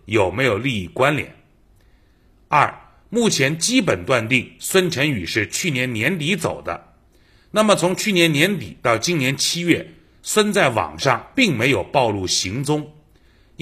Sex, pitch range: male, 120-180 Hz